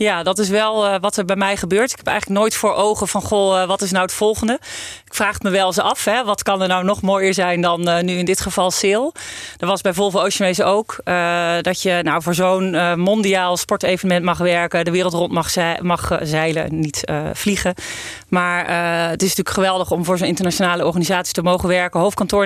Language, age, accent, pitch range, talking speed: Dutch, 40-59, Dutch, 175-195 Hz, 235 wpm